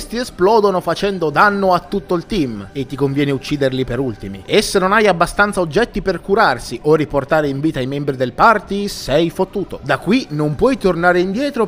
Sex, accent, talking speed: male, native, 190 wpm